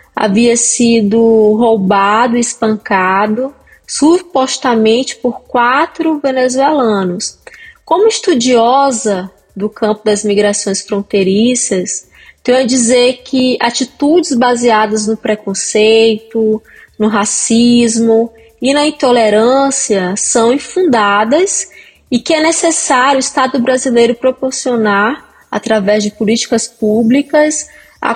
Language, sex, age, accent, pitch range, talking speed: Portuguese, female, 20-39, Brazilian, 220-275 Hz, 95 wpm